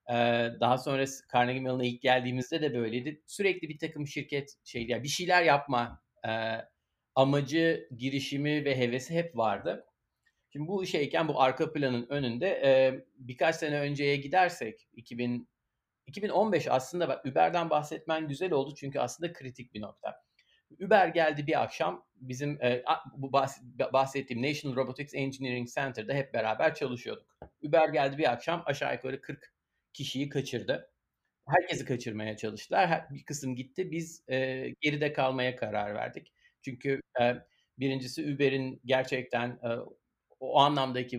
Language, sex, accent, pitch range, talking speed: Turkish, male, native, 120-145 Hz, 130 wpm